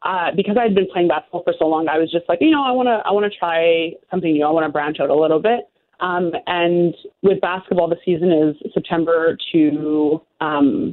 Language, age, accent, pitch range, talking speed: English, 20-39, American, 160-195 Hz, 235 wpm